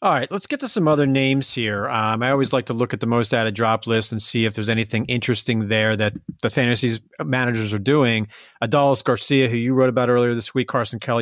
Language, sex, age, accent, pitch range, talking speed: English, male, 30-49, American, 120-175 Hz, 240 wpm